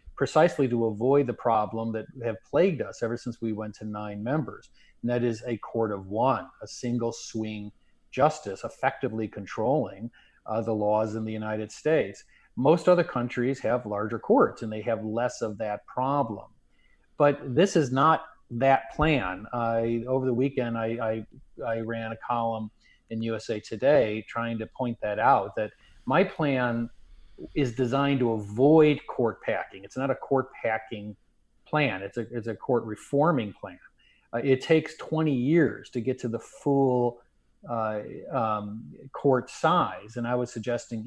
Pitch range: 110-130 Hz